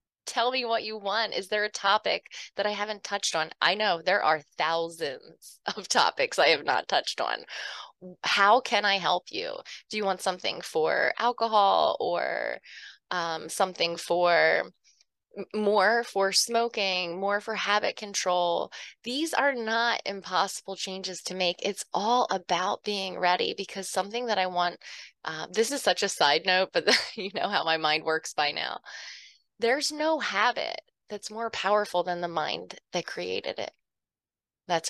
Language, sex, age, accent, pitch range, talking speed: English, female, 20-39, American, 185-240 Hz, 160 wpm